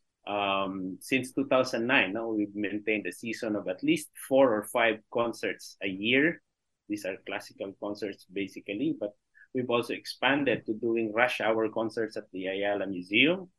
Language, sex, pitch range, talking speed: English, male, 105-130 Hz, 155 wpm